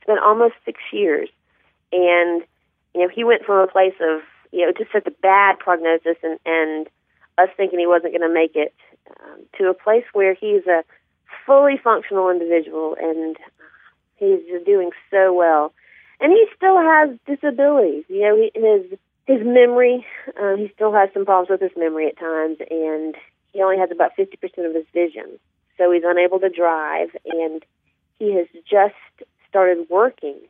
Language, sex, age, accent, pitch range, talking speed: English, female, 40-59, American, 165-255 Hz, 175 wpm